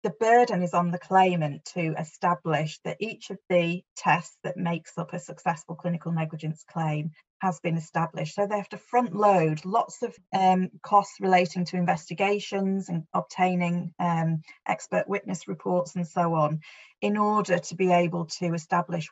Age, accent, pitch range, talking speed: 30-49, British, 170-195 Hz, 165 wpm